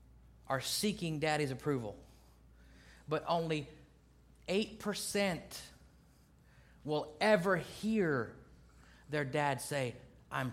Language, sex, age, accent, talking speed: English, male, 30-49, American, 80 wpm